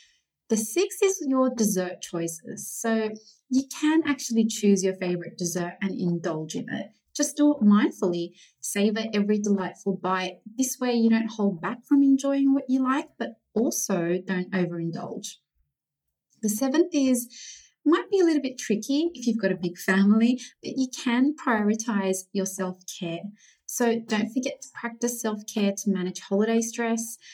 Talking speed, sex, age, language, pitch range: 160 wpm, female, 30-49, English, 190-250 Hz